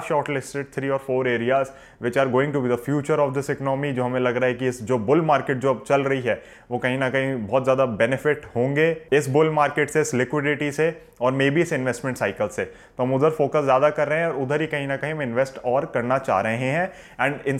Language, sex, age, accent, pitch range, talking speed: Hindi, male, 20-39, native, 125-155 Hz, 175 wpm